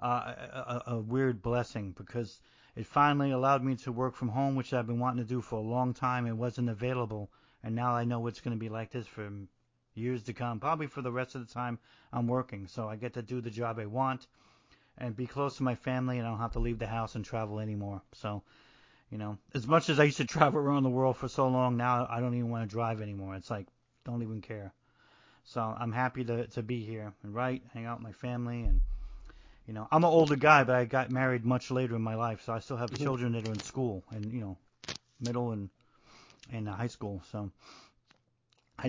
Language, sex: English, male